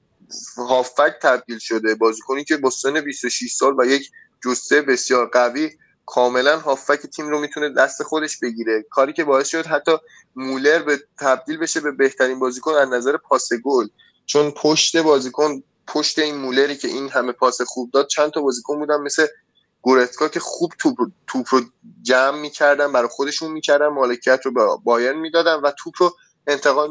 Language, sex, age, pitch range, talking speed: Persian, male, 20-39, 130-160 Hz, 165 wpm